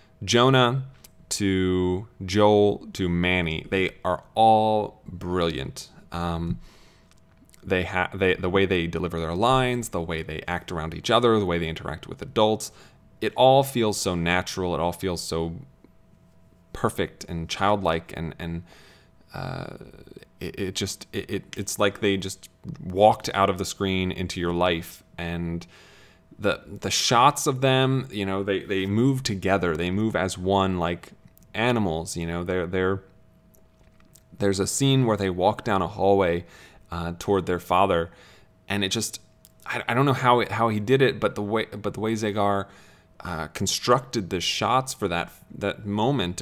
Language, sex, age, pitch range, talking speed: English, male, 20-39, 90-110 Hz, 160 wpm